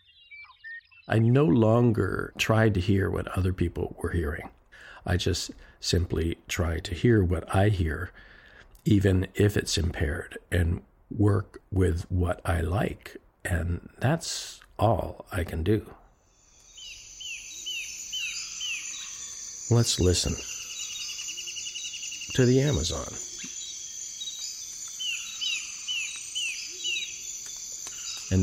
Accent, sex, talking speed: American, male, 90 wpm